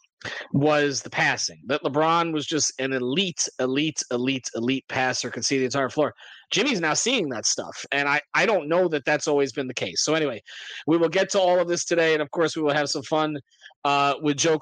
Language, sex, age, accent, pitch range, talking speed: English, male, 30-49, American, 135-170 Hz, 225 wpm